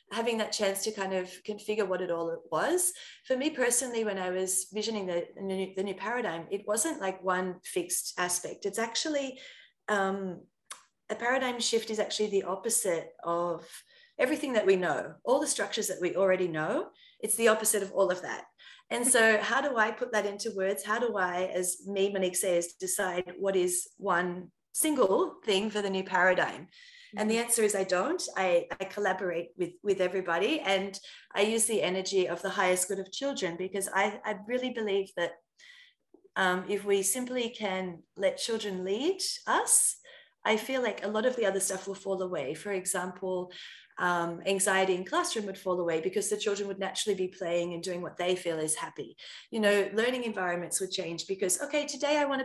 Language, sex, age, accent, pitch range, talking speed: English, female, 30-49, Australian, 185-230 Hz, 190 wpm